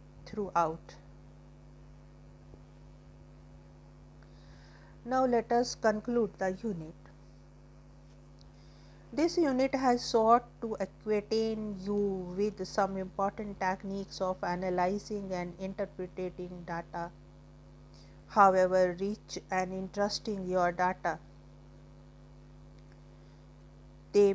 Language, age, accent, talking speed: English, 50-69, Indian, 75 wpm